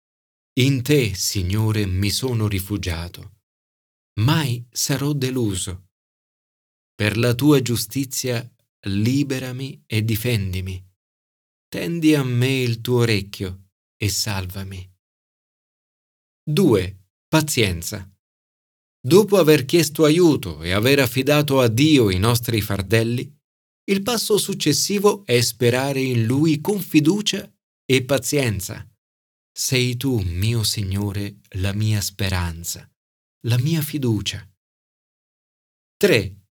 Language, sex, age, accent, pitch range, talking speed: Italian, male, 40-59, native, 100-140 Hz, 100 wpm